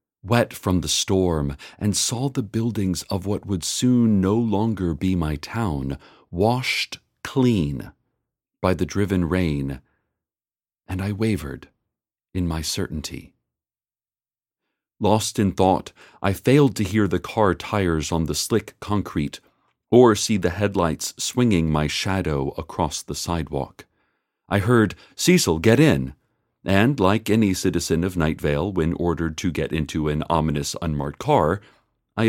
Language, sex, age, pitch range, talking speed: English, male, 40-59, 80-115 Hz, 140 wpm